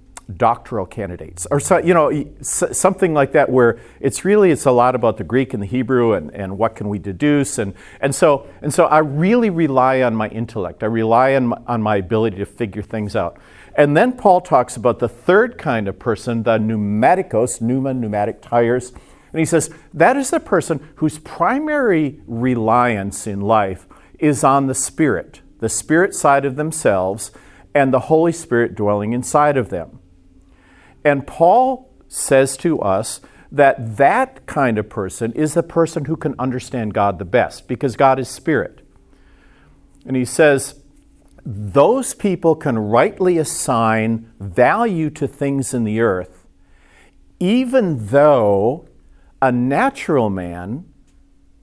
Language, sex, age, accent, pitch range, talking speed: English, male, 50-69, American, 110-150 Hz, 155 wpm